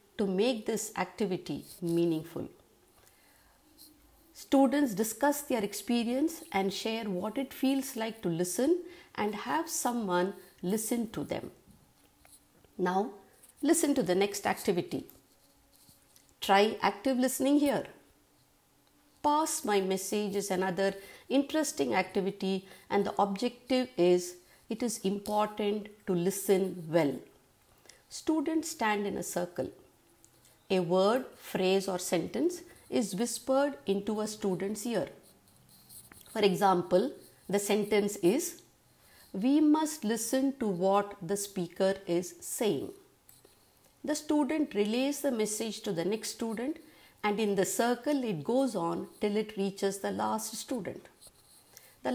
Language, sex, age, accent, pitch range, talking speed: English, female, 50-69, Indian, 195-265 Hz, 115 wpm